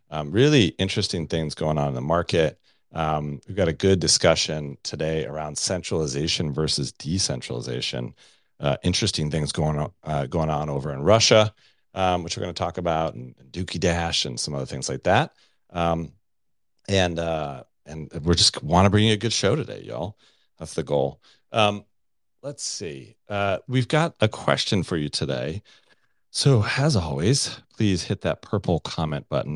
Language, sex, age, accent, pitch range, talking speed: English, male, 40-59, American, 75-105 Hz, 175 wpm